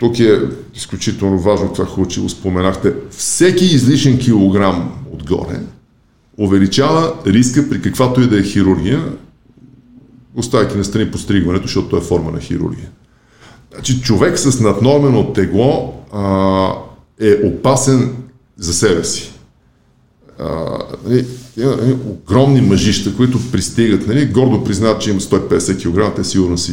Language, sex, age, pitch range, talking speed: Bulgarian, male, 50-69, 95-130 Hz, 125 wpm